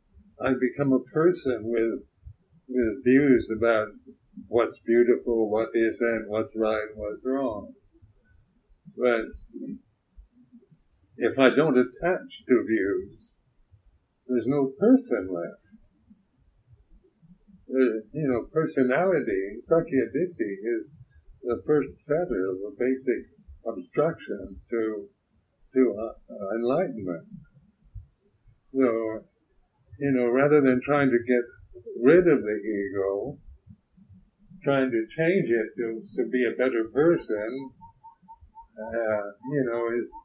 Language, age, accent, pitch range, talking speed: English, 60-79, American, 115-160 Hz, 105 wpm